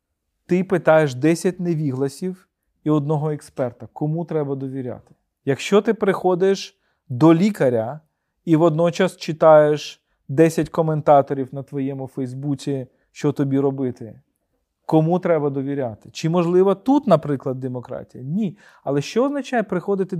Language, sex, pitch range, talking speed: Ukrainian, male, 135-175 Hz, 115 wpm